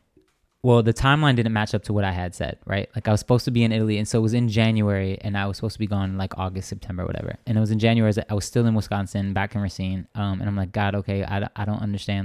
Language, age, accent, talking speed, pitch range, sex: English, 20-39, American, 305 wpm, 95-110 Hz, male